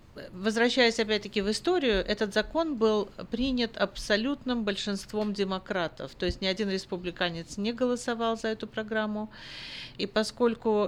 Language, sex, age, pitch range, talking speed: Russian, female, 50-69, 180-220 Hz, 125 wpm